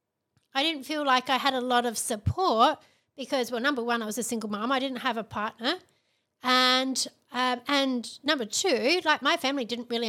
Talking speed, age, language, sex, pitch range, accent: 200 wpm, 30-49, English, female, 235-280 Hz, Australian